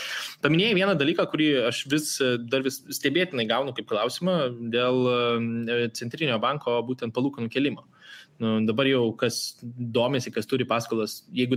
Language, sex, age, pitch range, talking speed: English, male, 20-39, 120-155 Hz, 140 wpm